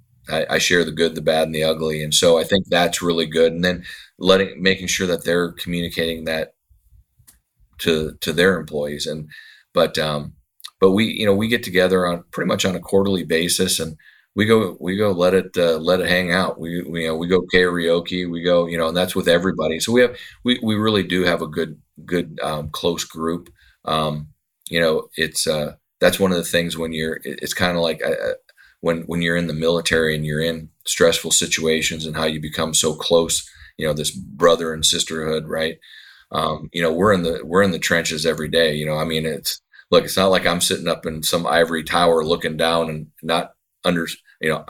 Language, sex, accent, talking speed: English, male, American, 220 wpm